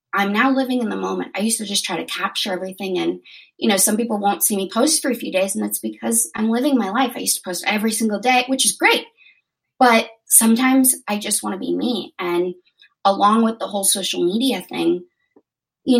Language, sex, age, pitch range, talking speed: English, female, 20-39, 180-250 Hz, 230 wpm